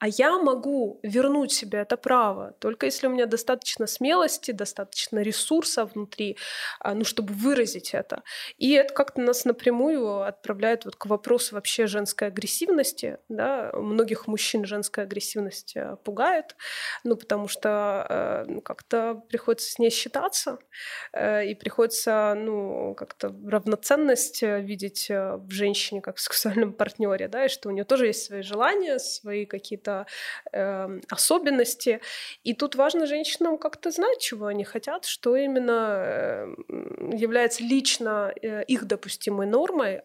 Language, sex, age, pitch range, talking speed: Ukrainian, female, 20-39, 205-265 Hz, 130 wpm